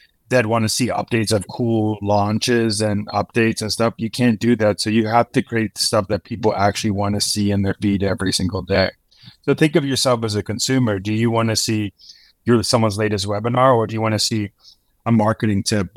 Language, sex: English, male